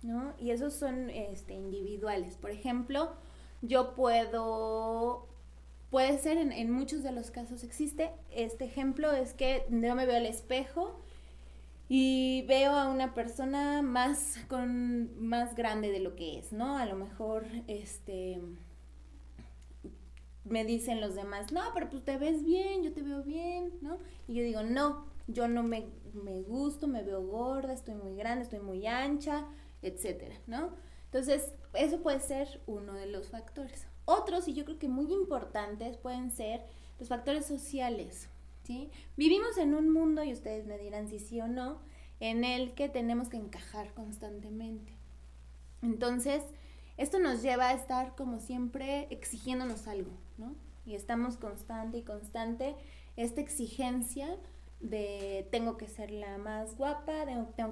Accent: Mexican